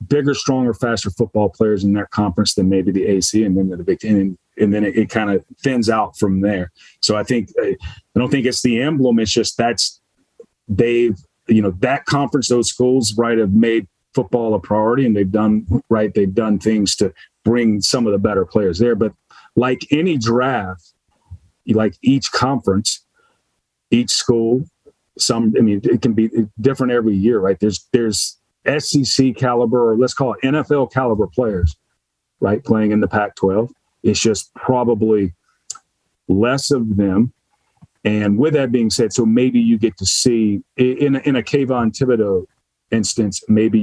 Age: 40-59